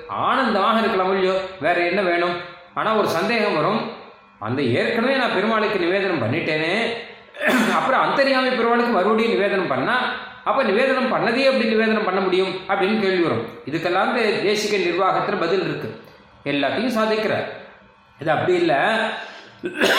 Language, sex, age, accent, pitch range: Tamil, male, 30-49, native, 175-225 Hz